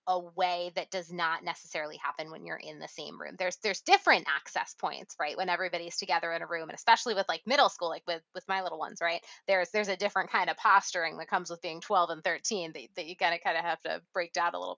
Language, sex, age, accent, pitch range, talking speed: English, female, 20-39, American, 175-225 Hz, 255 wpm